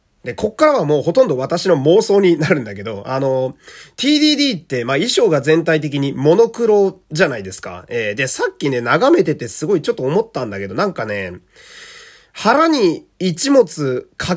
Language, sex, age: Japanese, male, 30-49